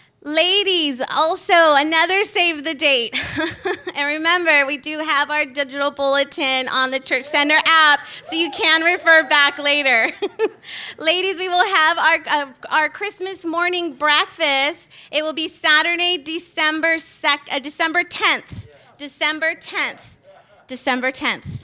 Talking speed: 135 wpm